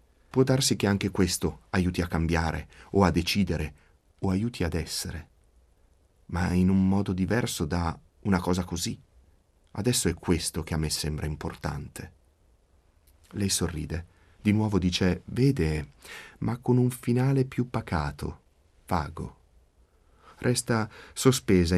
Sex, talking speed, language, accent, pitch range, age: male, 130 wpm, Italian, native, 80-115 Hz, 30-49